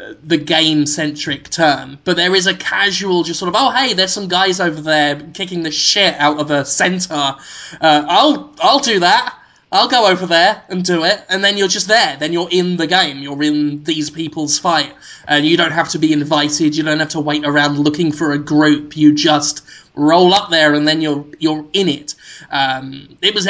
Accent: British